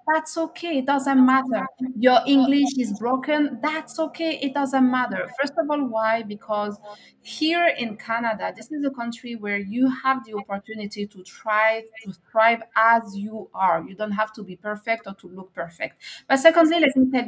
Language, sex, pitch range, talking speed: English, female, 225-285 Hz, 185 wpm